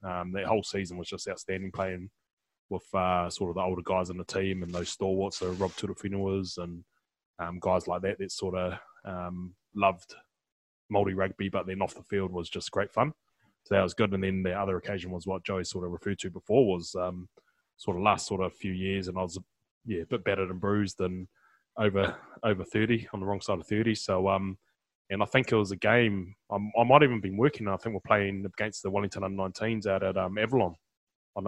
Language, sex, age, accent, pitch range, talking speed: English, male, 20-39, New Zealand, 95-105 Hz, 230 wpm